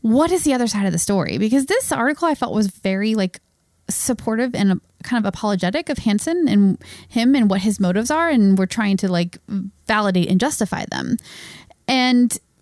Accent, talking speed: American, 190 wpm